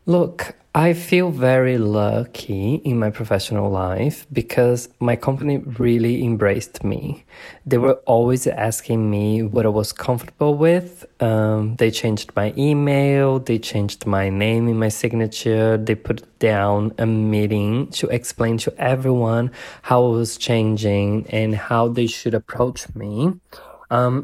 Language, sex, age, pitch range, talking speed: Portuguese, male, 20-39, 110-140 Hz, 140 wpm